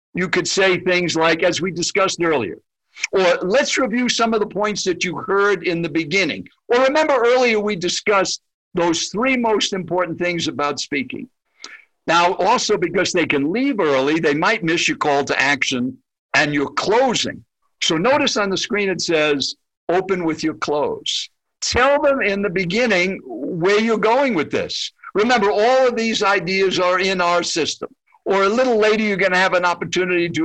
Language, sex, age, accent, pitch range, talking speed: English, male, 60-79, American, 165-215 Hz, 180 wpm